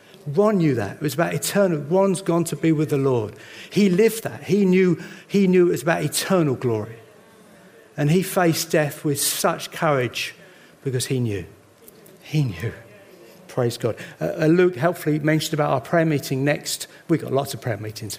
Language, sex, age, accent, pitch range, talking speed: English, male, 50-69, British, 130-170 Hz, 180 wpm